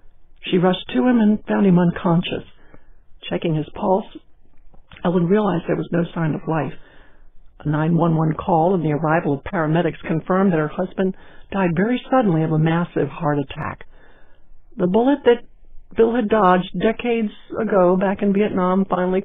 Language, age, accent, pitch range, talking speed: English, 60-79, American, 160-225 Hz, 160 wpm